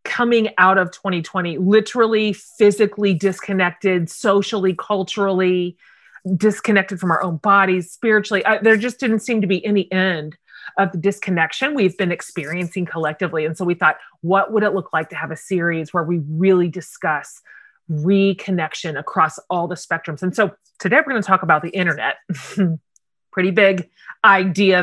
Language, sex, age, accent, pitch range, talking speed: English, female, 30-49, American, 175-210 Hz, 155 wpm